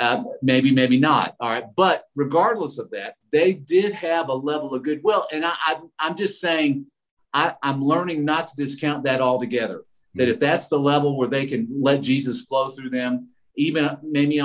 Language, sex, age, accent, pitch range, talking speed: English, male, 50-69, American, 130-155 Hz, 190 wpm